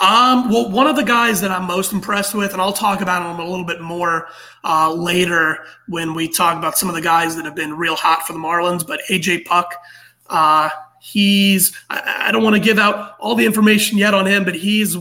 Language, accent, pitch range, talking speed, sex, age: English, American, 165-200 Hz, 230 wpm, male, 30-49